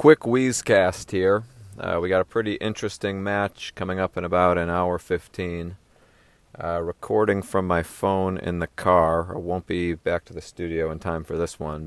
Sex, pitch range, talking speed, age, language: male, 85-105 Hz, 190 wpm, 30-49, English